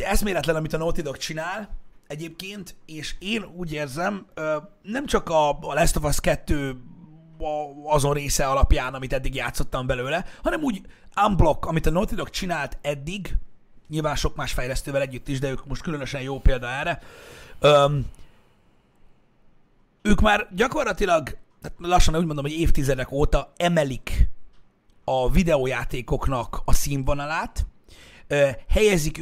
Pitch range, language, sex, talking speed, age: 135-165 Hz, Hungarian, male, 125 wpm, 30-49